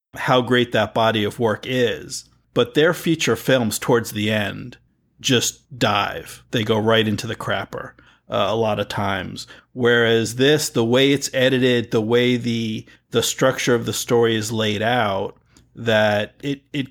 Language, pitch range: English, 110-130 Hz